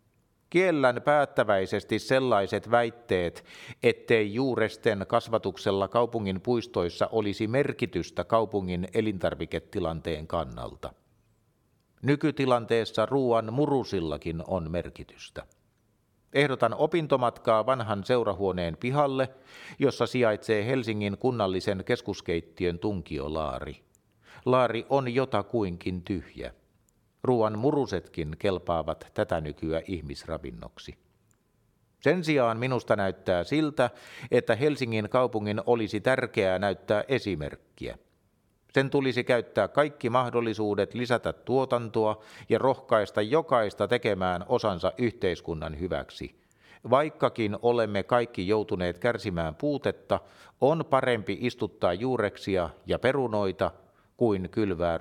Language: Finnish